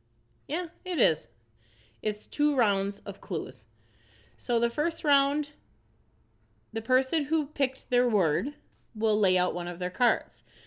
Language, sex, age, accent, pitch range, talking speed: English, female, 30-49, American, 190-265 Hz, 140 wpm